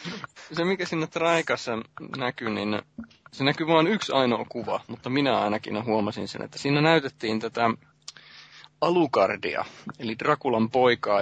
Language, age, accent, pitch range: Finnish, 30-49, native, 105-130 Hz